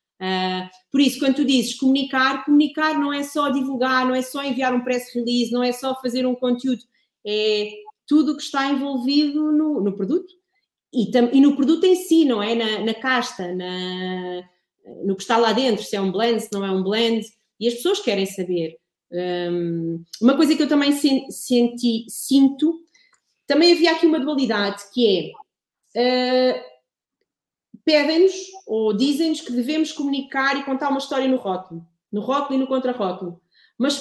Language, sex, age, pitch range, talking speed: Portuguese, female, 30-49, 200-290 Hz, 165 wpm